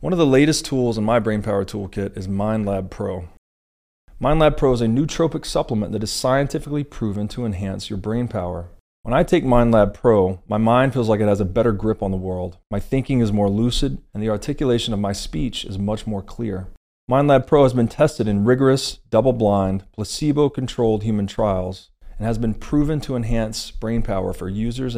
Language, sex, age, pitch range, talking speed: English, male, 30-49, 95-120 Hz, 200 wpm